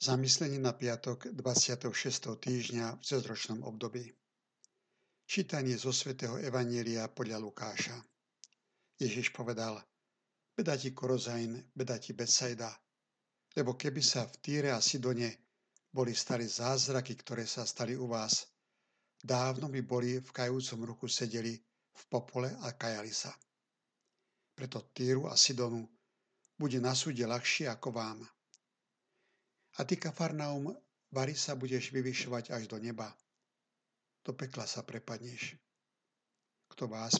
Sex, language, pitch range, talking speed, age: male, Slovak, 120-130 Hz, 120 wpm, 60-79